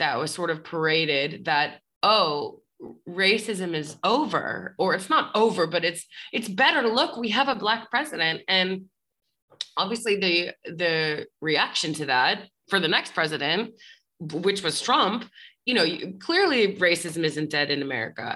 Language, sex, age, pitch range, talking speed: English, female, 20-39, 155-200 Hz, 155 wpm